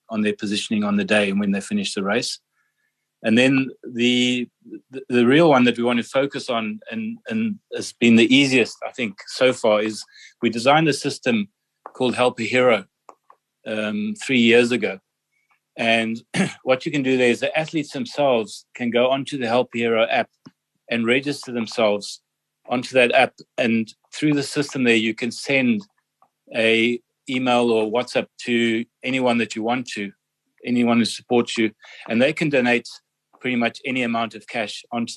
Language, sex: English, male